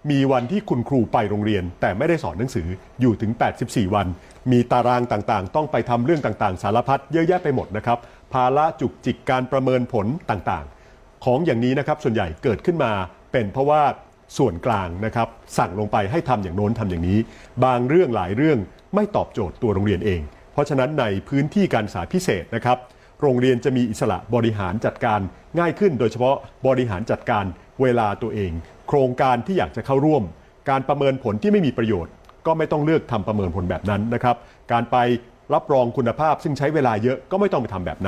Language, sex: Thai, male